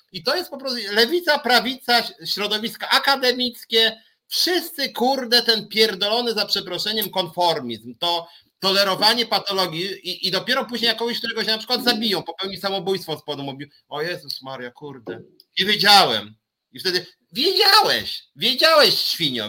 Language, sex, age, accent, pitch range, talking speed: Polish, male, 40-59, native, 160-240 Hz, 140 wpm